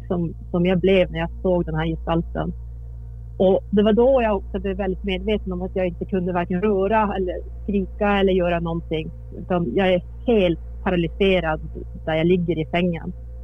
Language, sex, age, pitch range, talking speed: Swedish, female, 30-49, 170-205 Hz, 185 wpm